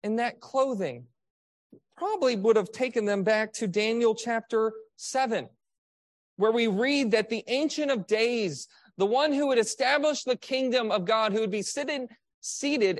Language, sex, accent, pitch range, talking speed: English, male, American, 195-265 Hz, 160 wpm